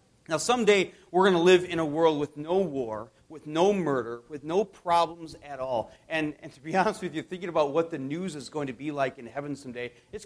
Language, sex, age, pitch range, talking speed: English, male, 40-59, 125-180 Hz, 240 wpm